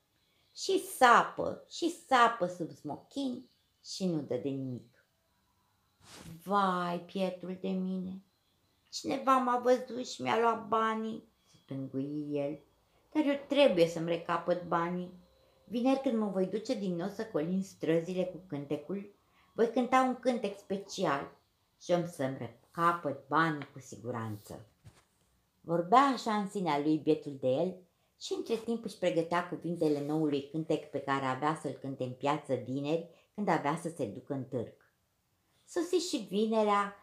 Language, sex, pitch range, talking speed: Romanian, female, 145-205 Hz, 145 wpm